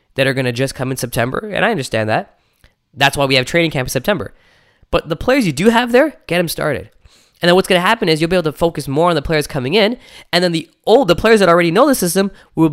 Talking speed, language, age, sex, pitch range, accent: 285 wpm, English, 10-29, male, 125-175 Hz, American